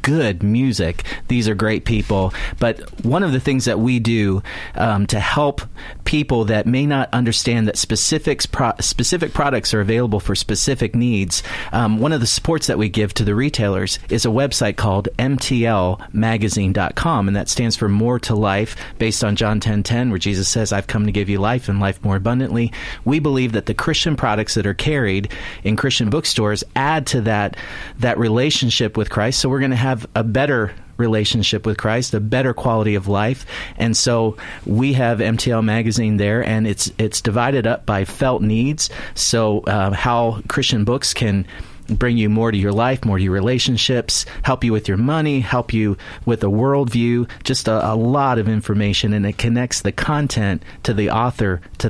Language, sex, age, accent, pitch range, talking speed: English, male, 40-59, American, 105-125 Hz, 190 wpm